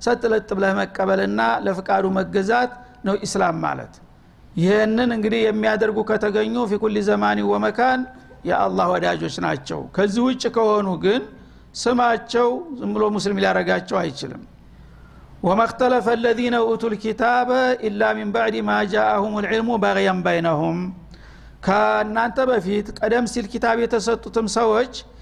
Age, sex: 60-79, male